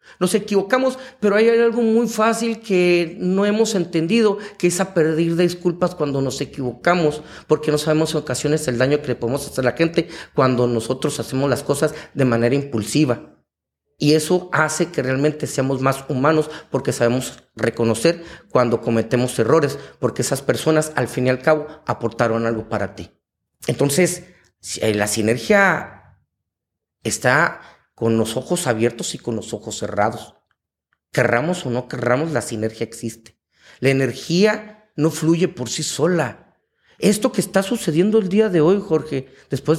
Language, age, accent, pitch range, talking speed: English, 40-59, Mexican, 130-205 Hz, 160 wpm